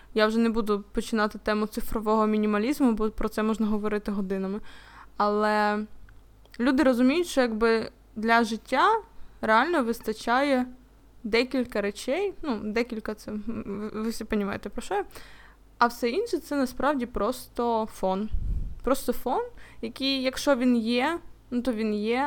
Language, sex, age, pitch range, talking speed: Ukrainian, female, 20-39, 215-260 Hz, 145 wpm